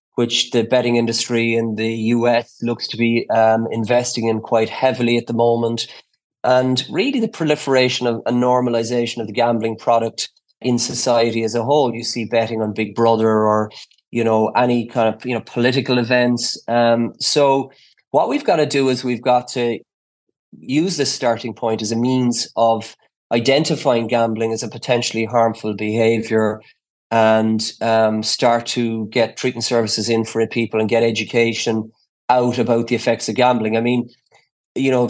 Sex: male